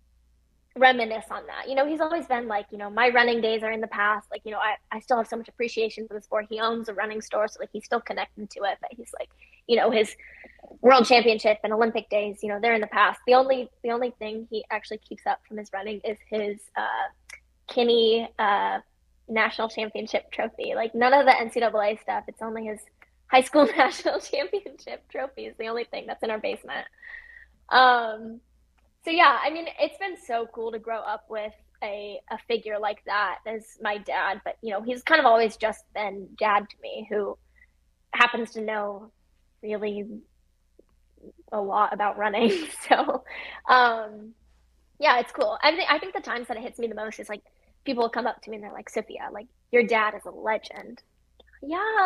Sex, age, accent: female, 10-29, American